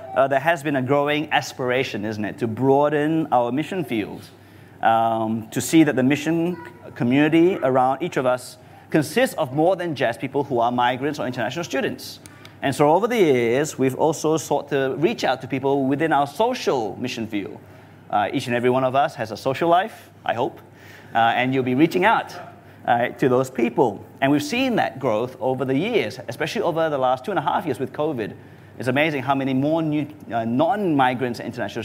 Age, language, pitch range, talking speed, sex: 30-49, English, 125-150 Hz, 200 wpm, male